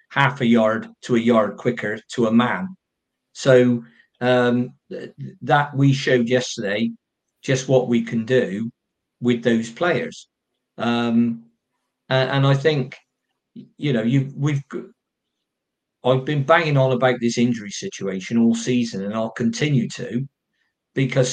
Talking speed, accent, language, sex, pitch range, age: 130 wpm, British, English, male, 120-135 Hz, 50-69